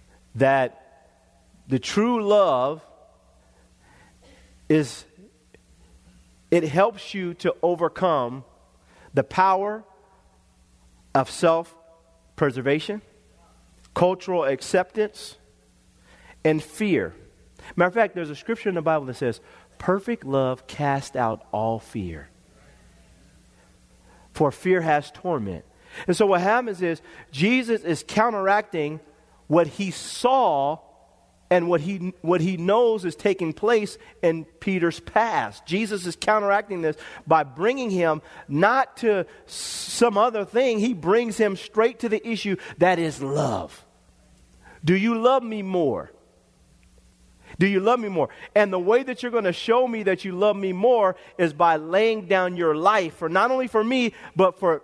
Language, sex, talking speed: English, male, 130 wpm